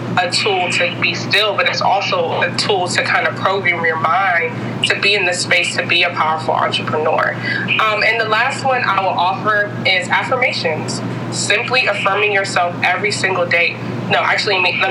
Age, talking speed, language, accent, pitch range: 20-39, 185 wpm, English, American, 165-190 Hz